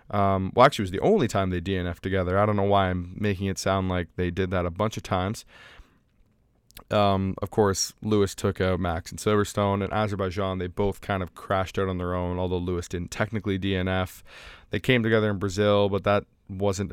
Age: 20-39